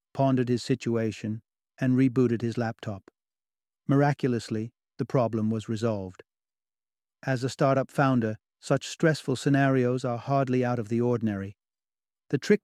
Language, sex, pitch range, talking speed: English, male, 120-145 Hz, 130 wpm